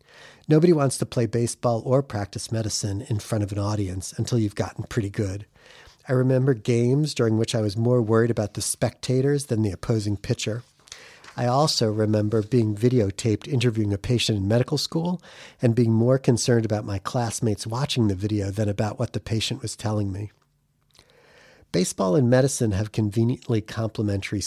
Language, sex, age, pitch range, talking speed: English, male, 40-59, 105-125 Hz, 170 wpm